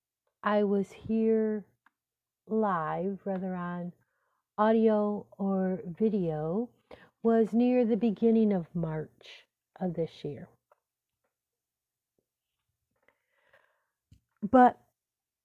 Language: English